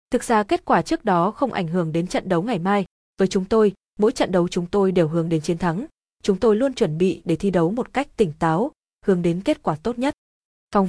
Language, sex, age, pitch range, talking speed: Vietnamese, female, 20-39, 185-235 Hz, 255 wpm